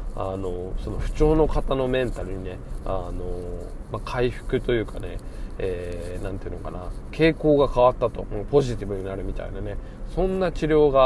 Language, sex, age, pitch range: Japanese, male, 20-39, 100-130 Hz